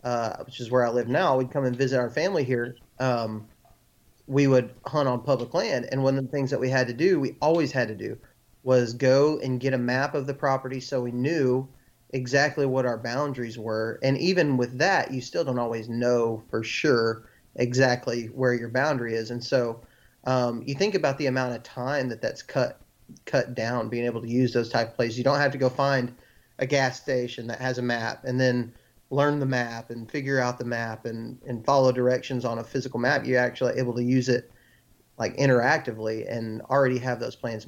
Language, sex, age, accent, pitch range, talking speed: English, male, 30-49, American, 120-135 Hz, 215 wpm